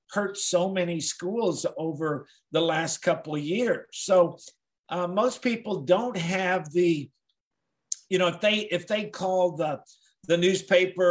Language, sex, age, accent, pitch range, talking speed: English, male, 50-69, American, 165-195 Hz, 145 wpm